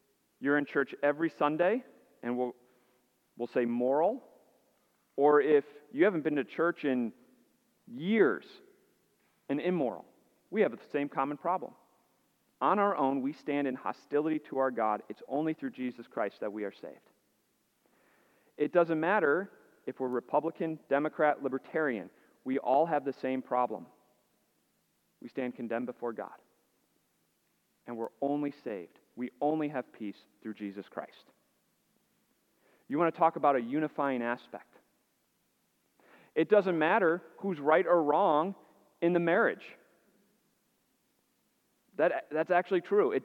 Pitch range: 130-175 Hz